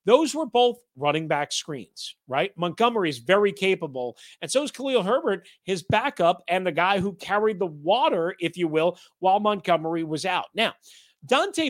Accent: American